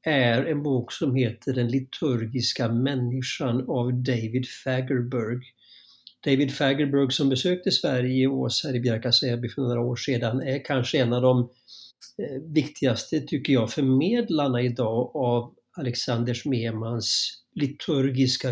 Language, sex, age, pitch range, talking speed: Swedish, male, 50-69, 125-145 Hz, 130 wpm